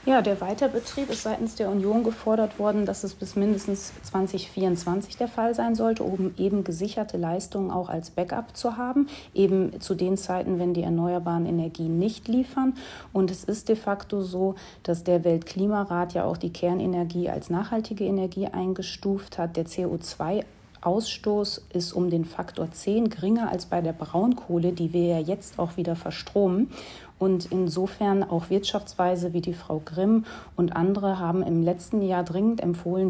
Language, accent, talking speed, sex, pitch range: German, German, 165 wpm, female, 175-210 Hz